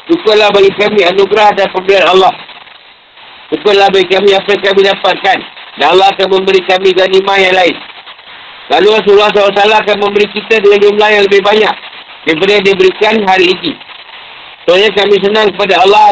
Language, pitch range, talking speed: Malay, 190-210 Hz, 160 wpm